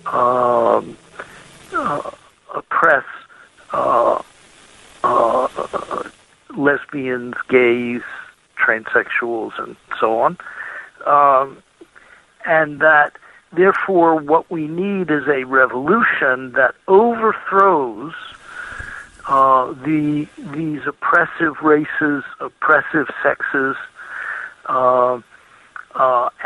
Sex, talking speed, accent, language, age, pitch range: male, 70 wpm, American, English, 60-79, 125-165 Hz